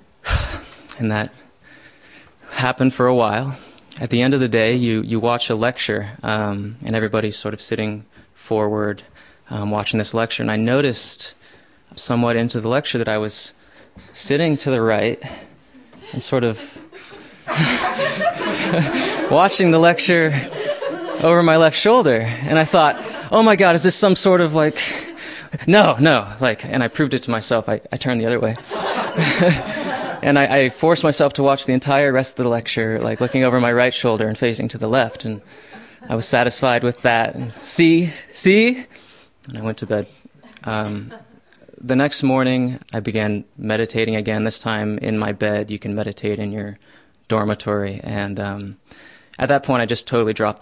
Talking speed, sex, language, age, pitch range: 170 wpm, male, English, 20-39, 110-145 Hz